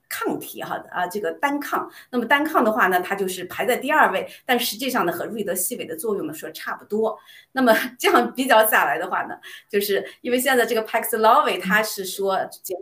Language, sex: Chinese, female